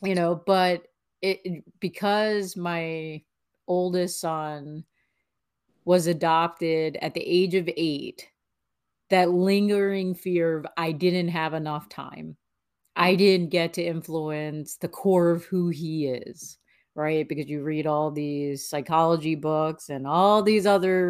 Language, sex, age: English, female, 30-49